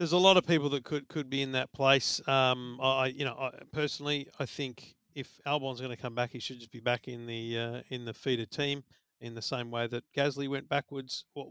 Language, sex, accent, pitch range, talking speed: English, male, Australian, 120-145 Hz, 240 wpm